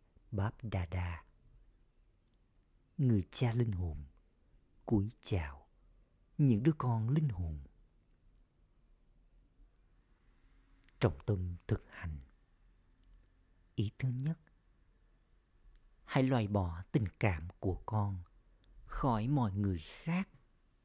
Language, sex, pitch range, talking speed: Vietnamese, male, 85-115 Hz, 90 wpm